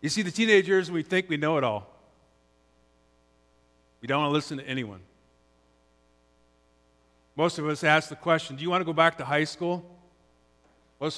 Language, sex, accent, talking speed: English, male, American, 175 wpm